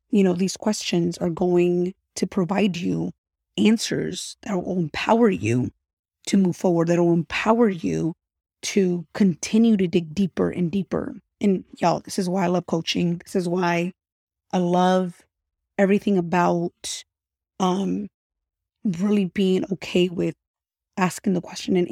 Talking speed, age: 140 wpm, 20-39